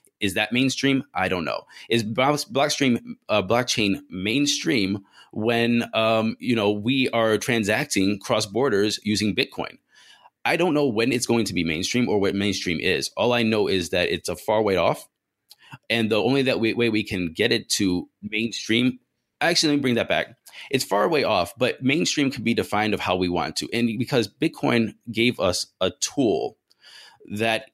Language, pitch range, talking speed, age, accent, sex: English, 95-120 Hz, 180 wpm, 20-39, American, male